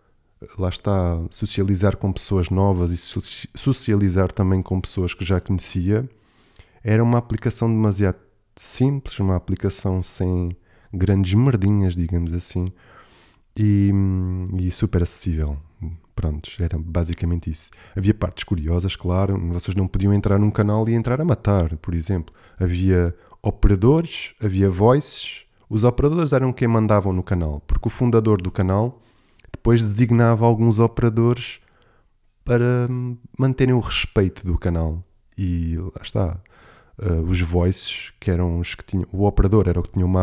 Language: Portuguese